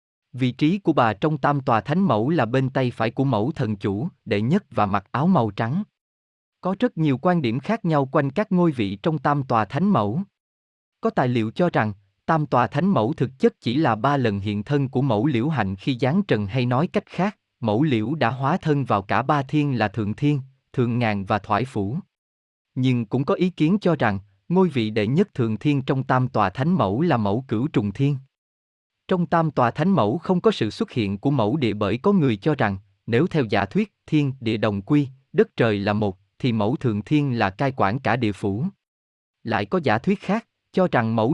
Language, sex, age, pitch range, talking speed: Vietnamese, male, 20-39, 110-160 Hz, 225 wpm